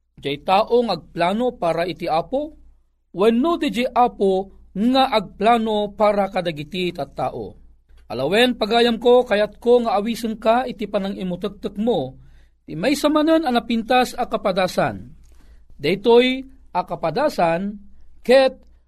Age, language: 40-59, Filipino